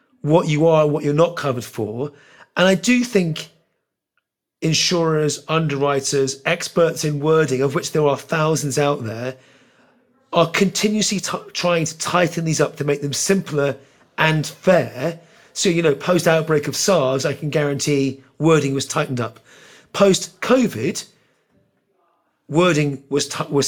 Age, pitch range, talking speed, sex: 30-49, 140-170 Hz, 145 wpm, male